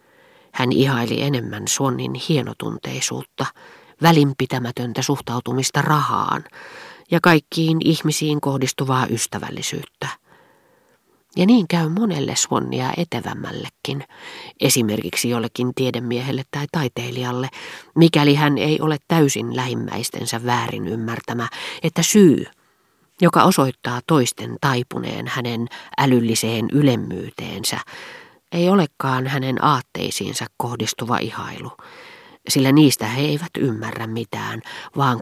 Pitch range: 120-155 Hz